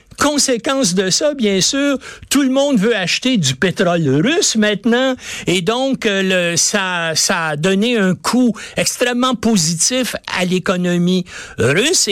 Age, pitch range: 60-79, 170-235 Hz